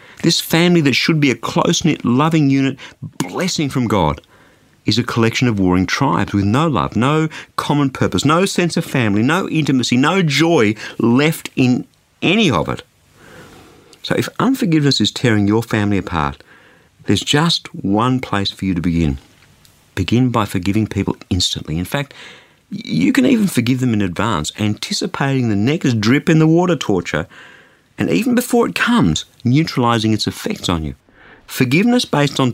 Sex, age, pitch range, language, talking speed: male, 50-69, 105-160 Hz, English, 155 wpm